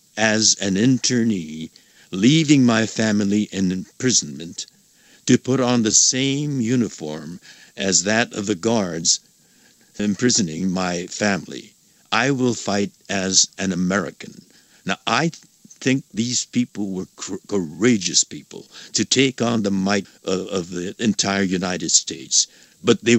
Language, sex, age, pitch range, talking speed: English, male, 60-79, 95-115 Hz, 125 wpm